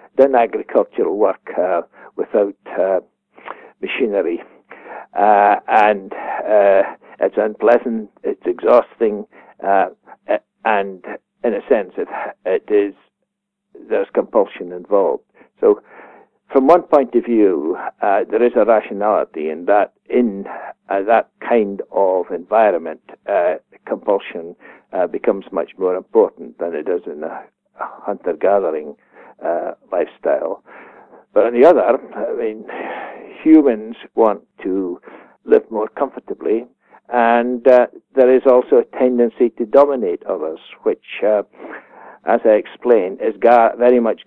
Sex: male